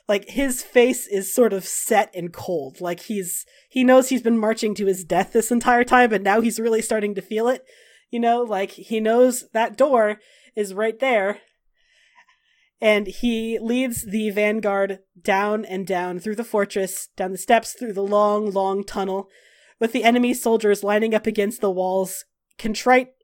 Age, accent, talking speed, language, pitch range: 30-49, American, 180 wpm, English, 190-230 Hz